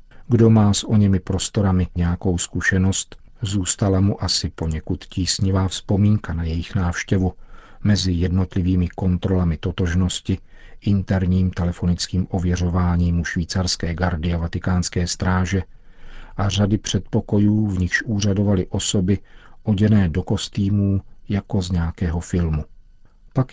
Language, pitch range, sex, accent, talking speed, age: Czech, 85-100 Hz, male, native, 115 wpm, 50-69